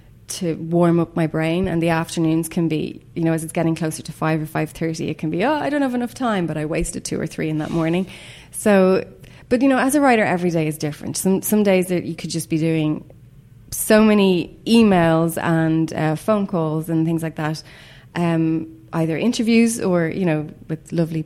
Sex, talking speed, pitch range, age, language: female, 220 wpm, 155-180 Hz, 20-39, English